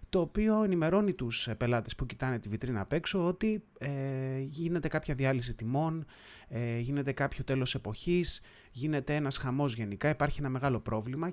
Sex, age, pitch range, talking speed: male, 30-49, 120-160 Hz, 160 wpm